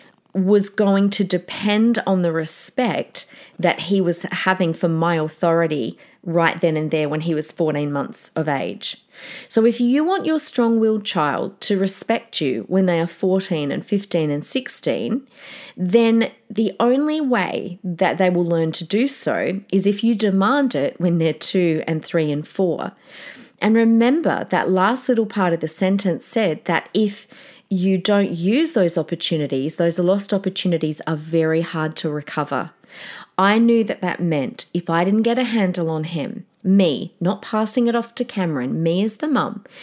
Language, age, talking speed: English, 40-59, 175 wpm